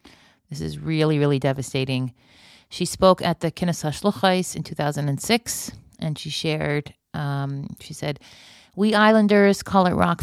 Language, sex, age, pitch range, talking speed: English, female, 40-59, 150-180 Hz, 140 wpm